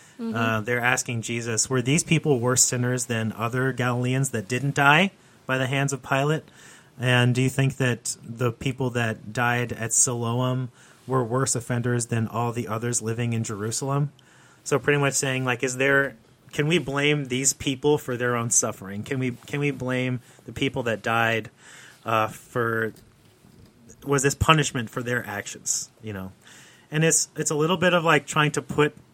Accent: American